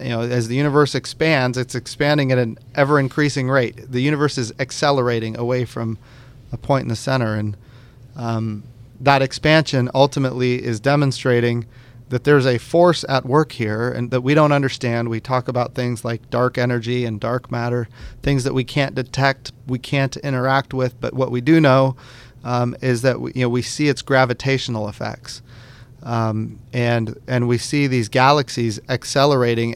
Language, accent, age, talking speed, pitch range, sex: English, American, 40-59, 170 wpm, 120-135 Hz, male